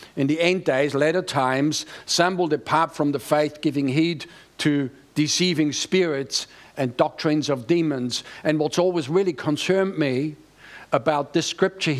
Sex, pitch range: male, 140-170 Hz